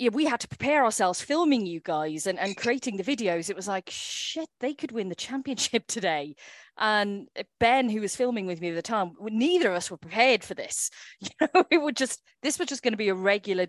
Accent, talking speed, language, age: British, 235 wpm, English, 40-59